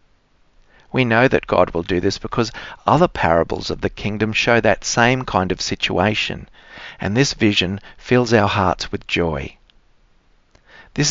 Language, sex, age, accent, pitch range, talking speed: English, male, 50-69, Australian, 95-115 Hz, 150 wpm